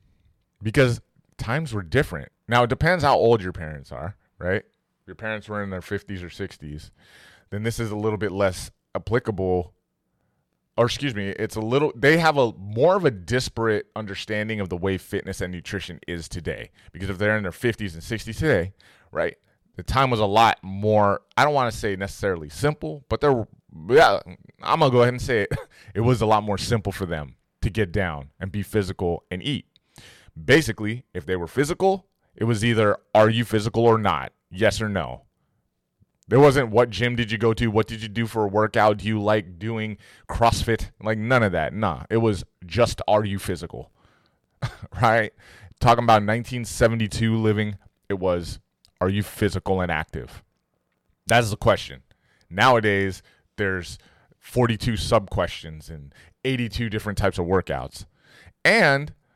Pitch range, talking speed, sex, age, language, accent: 95-115 Hz, 175 wpm, male, 20-39, English, American